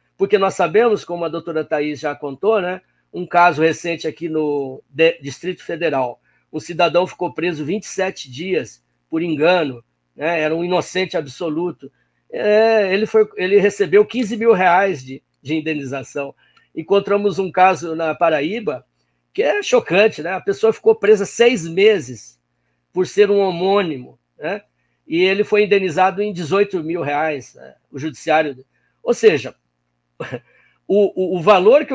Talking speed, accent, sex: 150 wpm, Brazilian, male